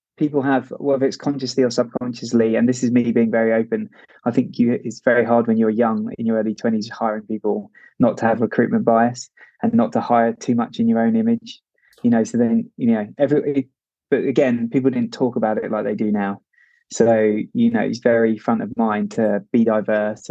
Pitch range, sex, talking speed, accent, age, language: 110-135 Hz, male, 220 wpm, British, 20-39, English